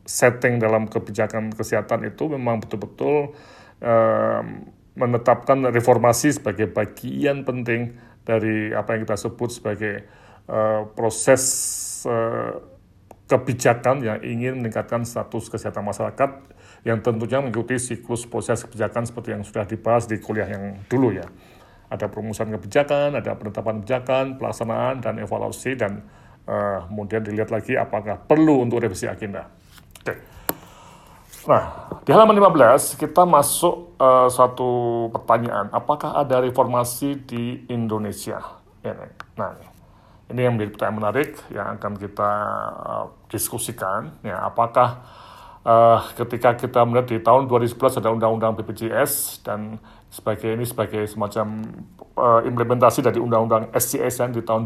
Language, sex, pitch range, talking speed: Indonesian, male, 110-125 Hz, 125 wpm